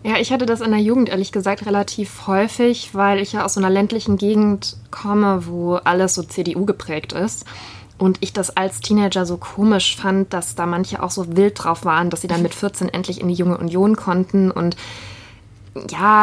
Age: 20-39